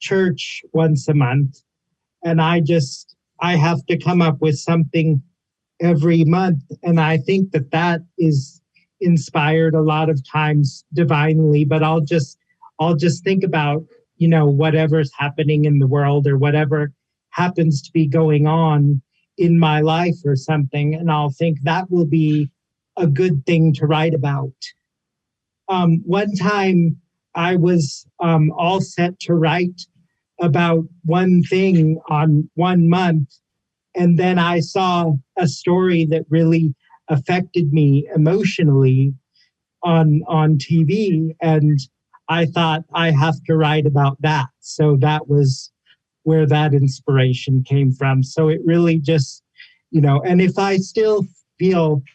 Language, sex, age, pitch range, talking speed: English, male, 40-59, 150-170 Hz, 145 wpm